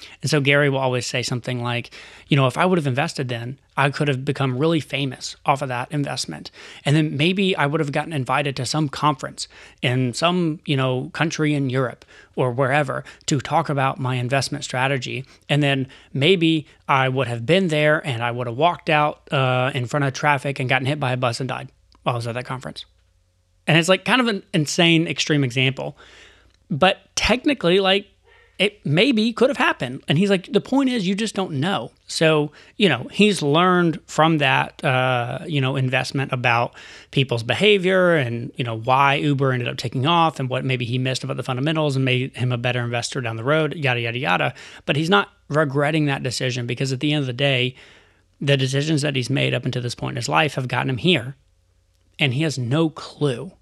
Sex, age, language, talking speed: male, 30-49, English, 210 wpm